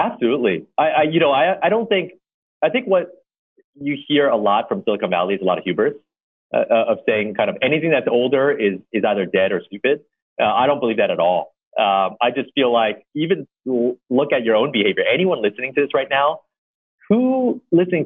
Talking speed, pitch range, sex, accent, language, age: 215 wpm, 120-170 Hz, male, American, English, 30-49